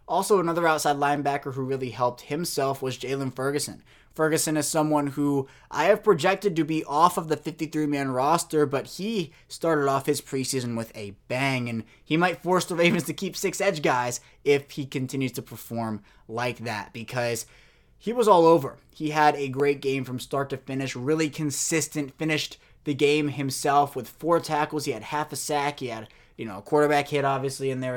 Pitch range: 125-155 Hz